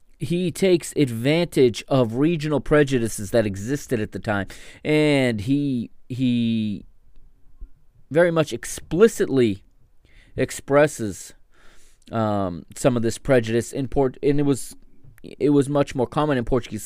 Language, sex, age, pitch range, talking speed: English, male, 20-39, 120-155 Hz, 125 wpm